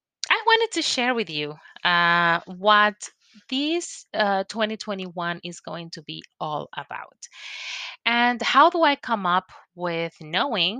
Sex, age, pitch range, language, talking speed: female, 30-49, 165-220 Hz, English, 130 wpm